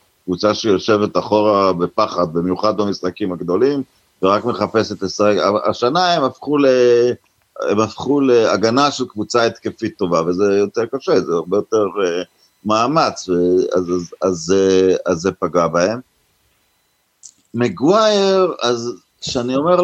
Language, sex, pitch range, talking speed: Hebrew, male, 105-145 Hz, 115 wpm